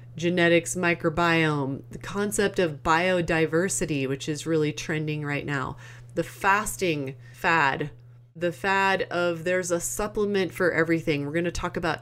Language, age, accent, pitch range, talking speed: English, 30-49, American, 150-180 Hz, 140 wpm